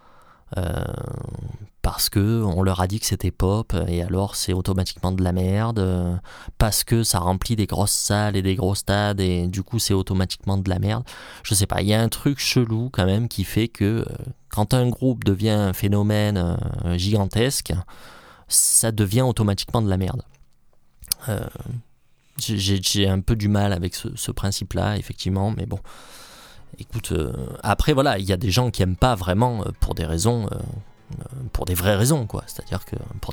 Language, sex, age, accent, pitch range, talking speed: French, male, 20-39, French, 95-120 Hz, 195 wpm